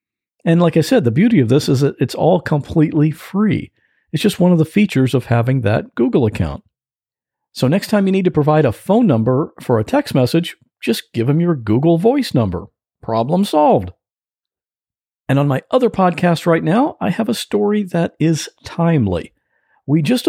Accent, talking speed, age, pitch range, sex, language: American, 190 wpm, 50-69, 115-170 Hz, male, English